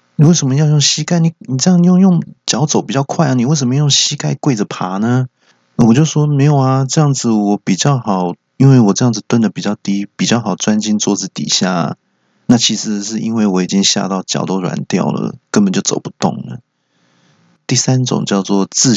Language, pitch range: Chinese, 95-140 Hz